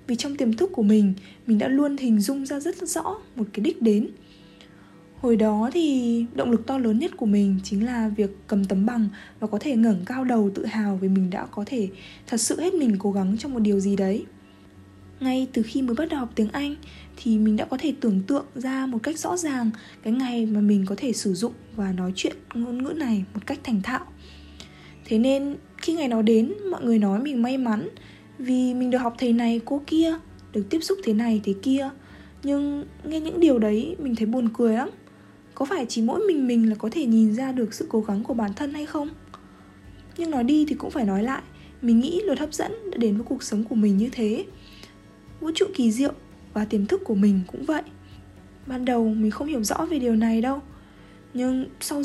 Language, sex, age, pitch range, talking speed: Vietnamese, female, 20-39, 210-275 Hz, 230 wpm